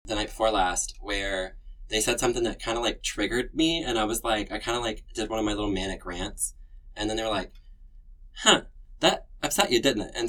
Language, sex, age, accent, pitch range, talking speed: English, male, 20-39, American, 90-110 Hz, 240 wpm